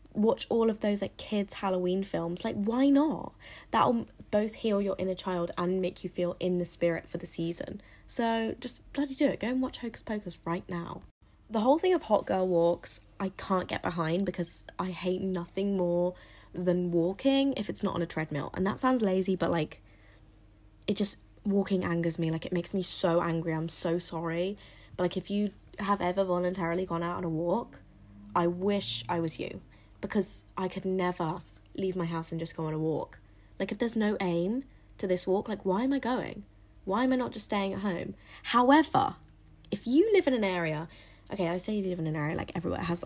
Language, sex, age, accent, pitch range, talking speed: English, female, 20-39, British, 170-205 Hz, 210 wpm